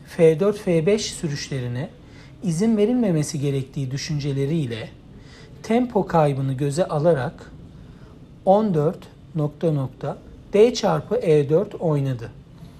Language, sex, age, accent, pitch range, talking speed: Turkish, male, 60-79, native, 140-185 Hz, 70 wpm